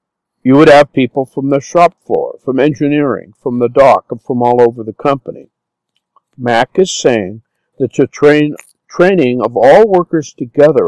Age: 50-69